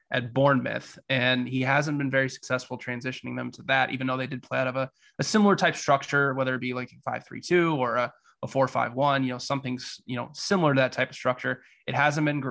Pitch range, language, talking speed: 125-140 Hz, English, 235 wpm